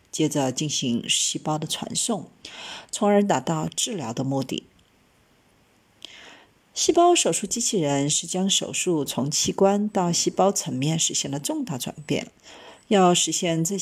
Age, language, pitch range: 50-69, Chinese, 155-225 Hz